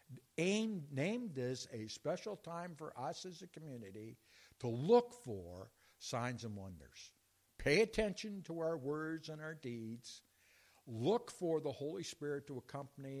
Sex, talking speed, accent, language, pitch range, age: male, 140 wpm, American, English, 105-150 Hz, 60-79